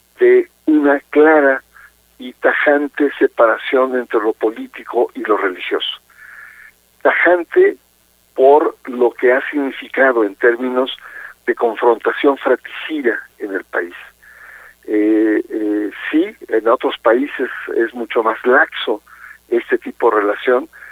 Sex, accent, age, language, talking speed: male, Mexican, 50-69, Spanish, 115 wpm